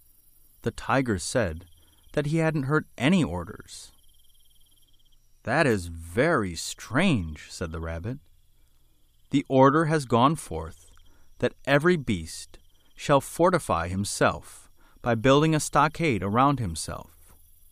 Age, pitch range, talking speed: 30-49, 85-140 Hz, 110 wpm